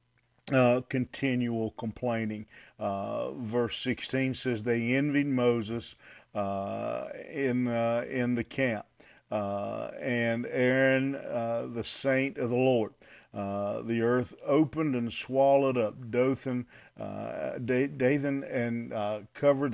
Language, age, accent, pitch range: English, 50-69, American, 115-130 Hz